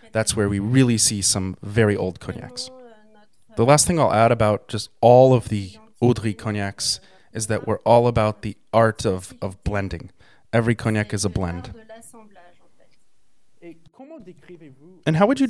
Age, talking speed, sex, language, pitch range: 20-39, 155 wpm, male, English, 100-130 Hz